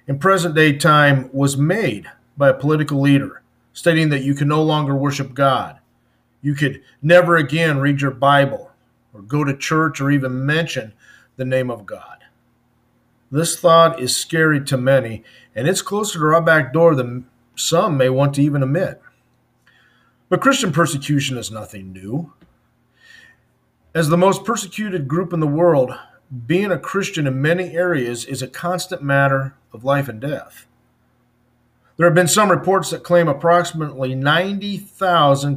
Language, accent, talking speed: English, American, 155 wpm